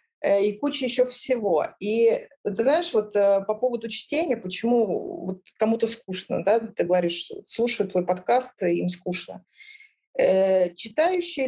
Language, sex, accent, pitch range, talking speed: Russian, female, native, 205-260 Hz, 125 wpm